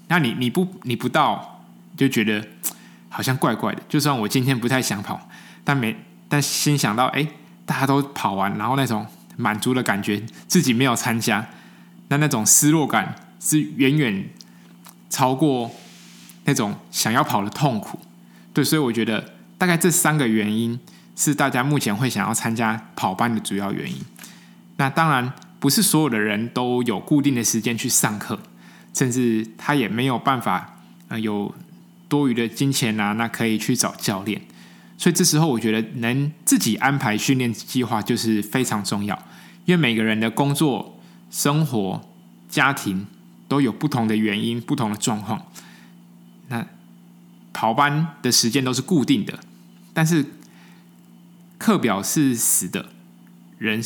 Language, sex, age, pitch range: Chinese, male, 20-39, 110-150 Hz